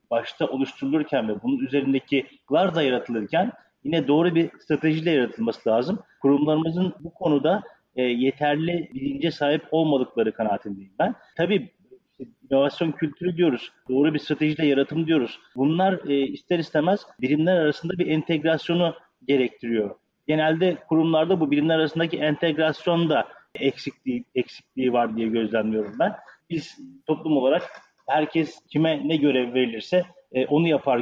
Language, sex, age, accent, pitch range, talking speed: Turkish, male, 40-59, native, 130-165 Hz, 120 wpm